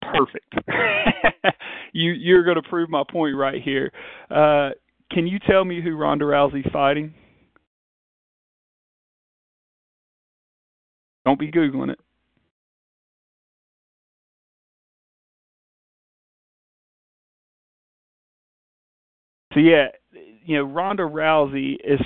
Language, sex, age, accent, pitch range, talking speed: English, male, 40-59, American, 135-155 Hz, 80 wpm